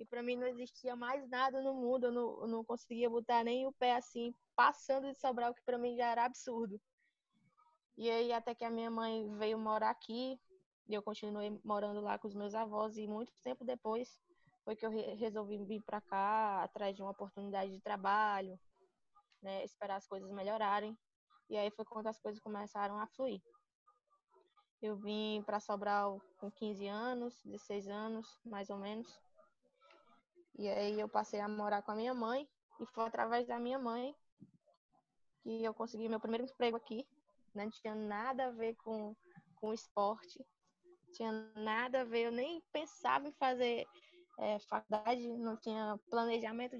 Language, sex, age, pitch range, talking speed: Portuguese, female, 10-29, 215-255 Hz, 175 wpm